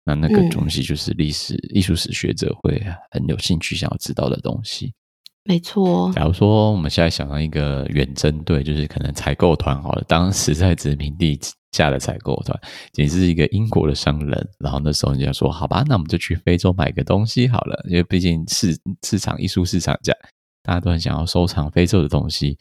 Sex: male